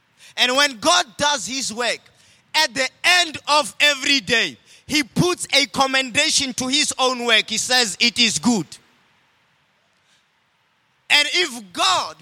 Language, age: English, 30-49